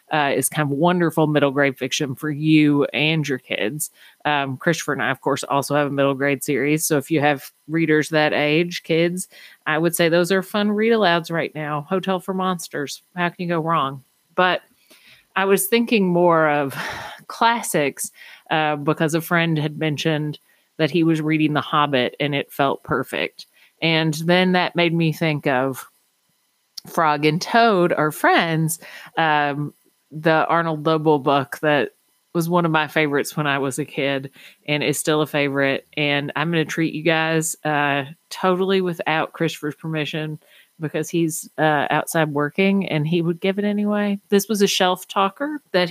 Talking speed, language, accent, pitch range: 175 wpm, English, American, 150-175 Hz